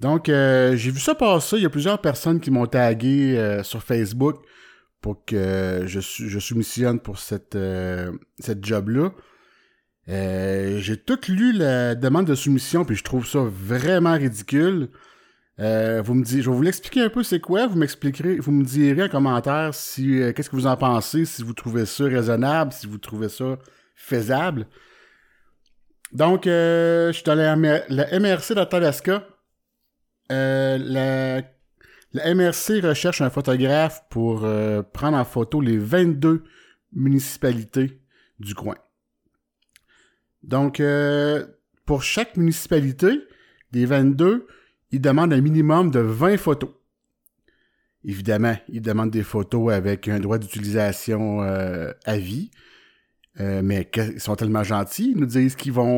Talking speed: 155 wpm